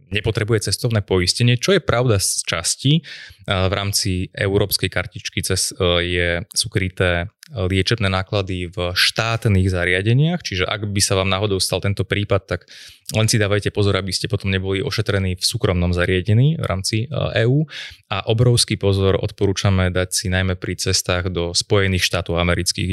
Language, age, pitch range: Slovak, 20-39, 90-110 Hz